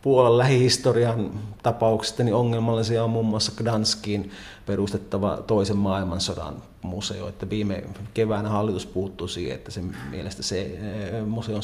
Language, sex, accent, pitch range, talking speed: Finnish, male, native, 100-115 Hz, 125 wpm